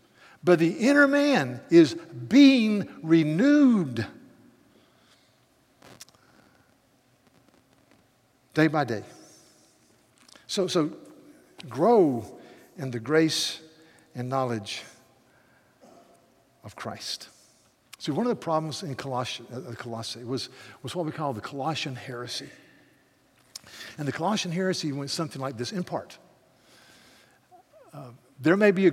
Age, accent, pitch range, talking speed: 60-79, American, 130-175 Hz, 105 wpm